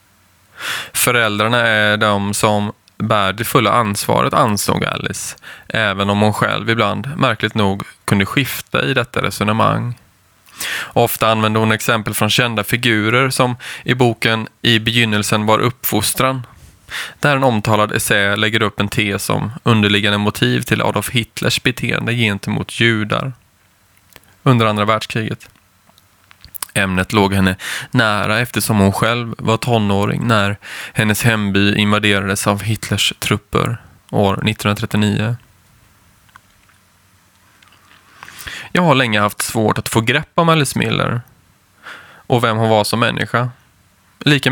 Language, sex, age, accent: Swedish, male, 20-39, native